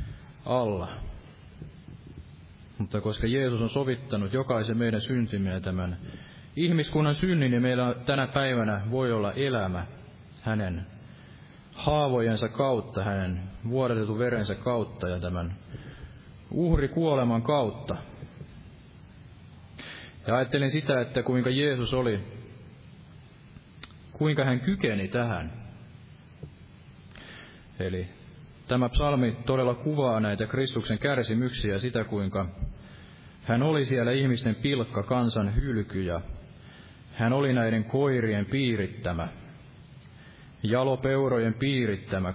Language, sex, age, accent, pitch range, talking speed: Finnish, male, 30-49, native, 105-135 Hz, 95 wpm